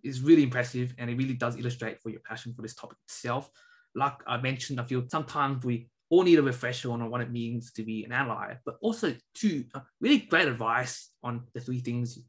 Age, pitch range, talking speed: 20-39, 115-135 Hz, 220 wpm